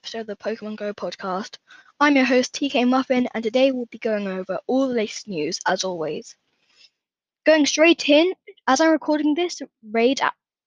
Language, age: English, 10-29